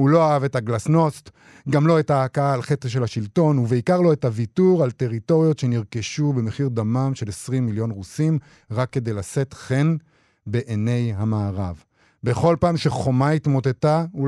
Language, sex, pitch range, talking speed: Hebrew, male, 125-160 Hz, 155 wpm